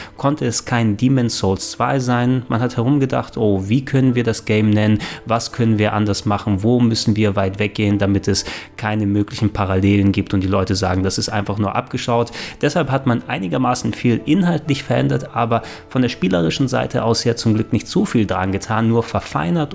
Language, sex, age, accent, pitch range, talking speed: German, male, 20-39, German, 100-120 Hz, 200 wpm